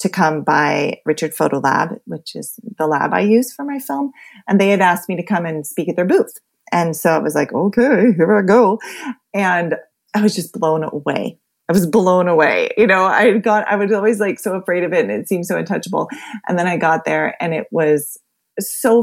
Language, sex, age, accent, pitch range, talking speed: English, female, 30-49, American, 165-235 Hz, 230 wpm